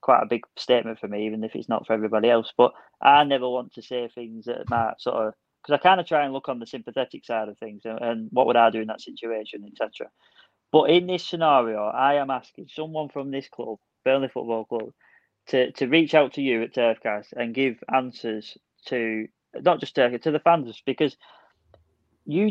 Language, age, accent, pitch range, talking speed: English, 20-39, British, 120-165 Hz, 215 wpm